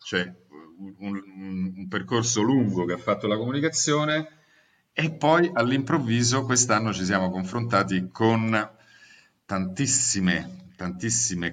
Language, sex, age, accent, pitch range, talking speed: Italian, male, 40-59, native, 90-110 Hz, 110 wpm